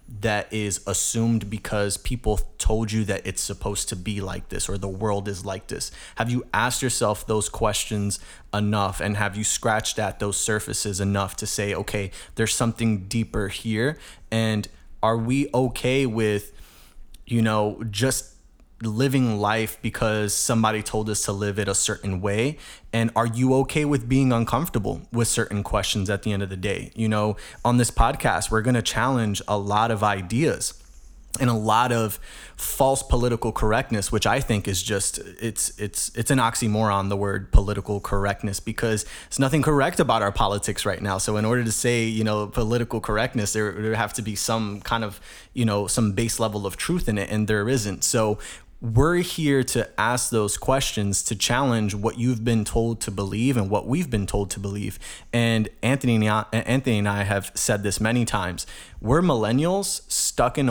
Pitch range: 100-120 Hz